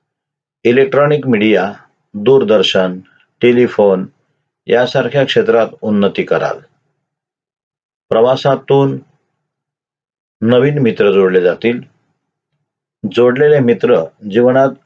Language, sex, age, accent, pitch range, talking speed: Marathi, male, 50-69, native, 115-150 Hz, 65 wpm